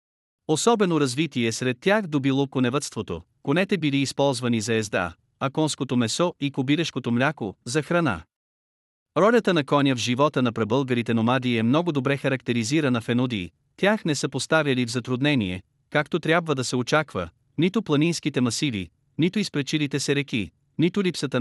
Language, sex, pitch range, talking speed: Bulgarian, male, 125-155 Hz, 150 wpm